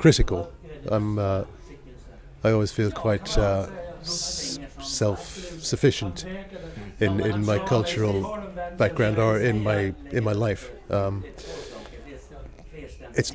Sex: male